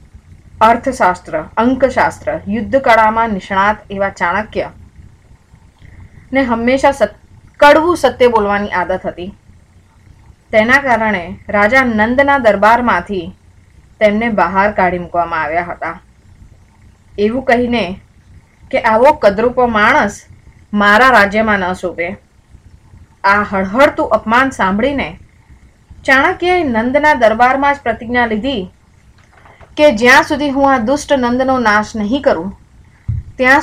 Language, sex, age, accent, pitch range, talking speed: Gujarati, female, 20-39, native, 180-265 Hz, 100 wpm